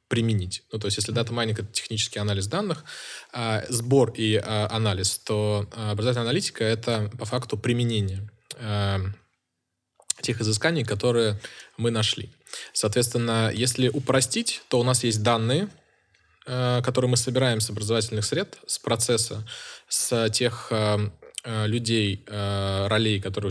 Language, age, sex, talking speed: Russian, 20-39, male, 115 wpm